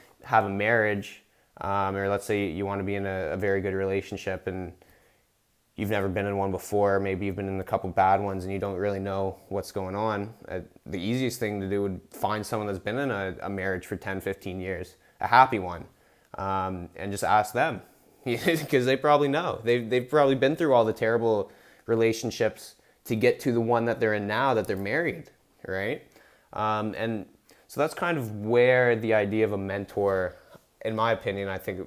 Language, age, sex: English, 20-39, male